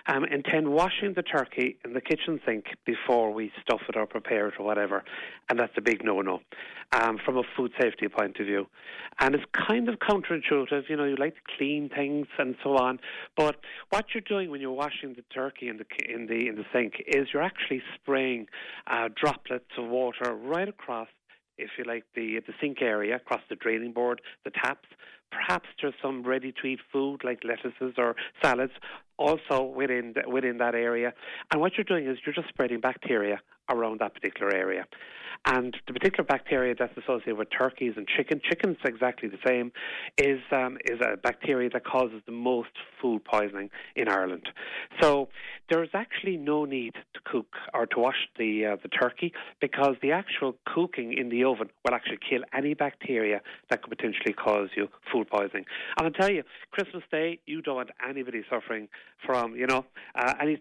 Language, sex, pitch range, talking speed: English, male, 120-150 Hz, 185 wpm